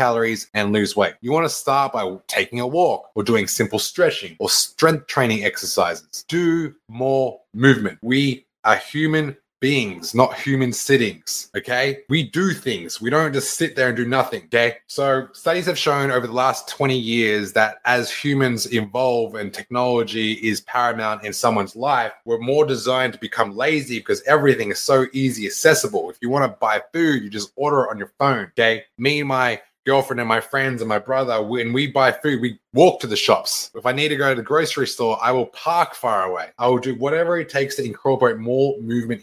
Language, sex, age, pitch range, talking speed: English, male, 20-39, 115-140 Hz, 200 wpm